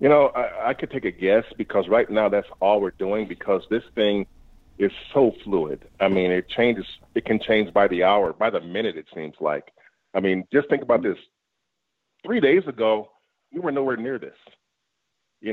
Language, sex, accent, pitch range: English, male, American, 100-140 Hz